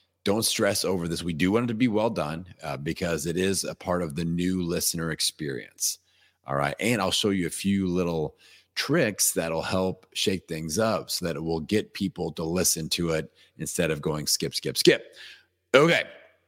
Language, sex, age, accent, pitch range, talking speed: English, male, 40-59, American, 80-95 Hz, 200 wpm